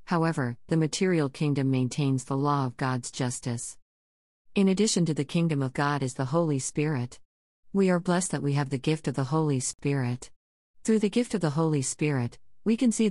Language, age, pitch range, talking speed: English, 50-69, 130-165 Hz, 195 wpm